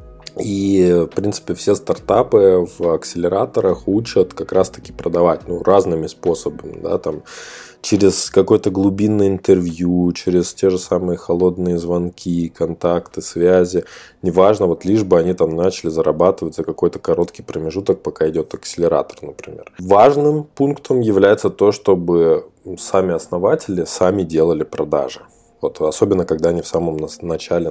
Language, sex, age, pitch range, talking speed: Russian, male, 20-39, 85-105 Hz, 125 wpm